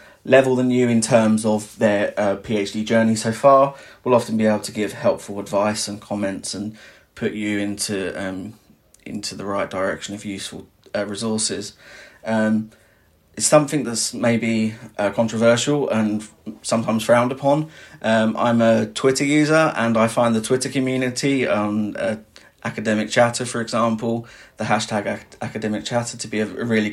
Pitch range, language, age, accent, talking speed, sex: 105-120 Hz, English, 20-39, British, 160 wpm, male